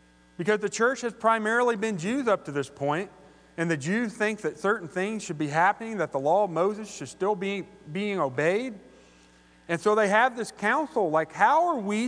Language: English